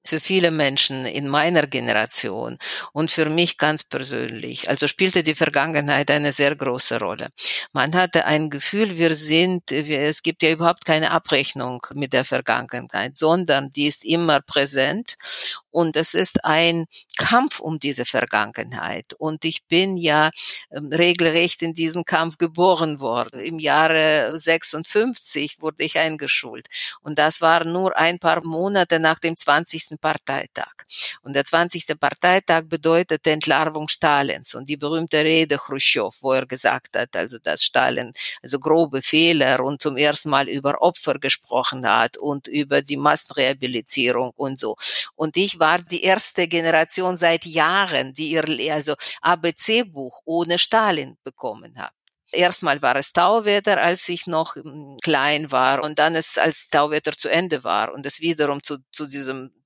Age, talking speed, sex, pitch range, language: 50-69, 150 wpm, female, 145-170 Hz, German